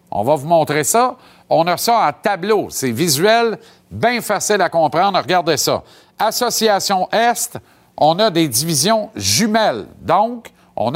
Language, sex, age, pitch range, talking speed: French, male, 50-69, 150-225 Hz, 150 wpm